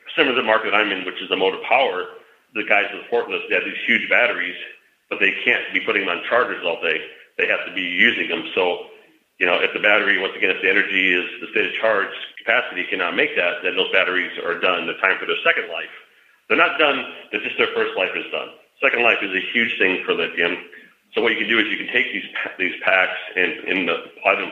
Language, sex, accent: English, male, American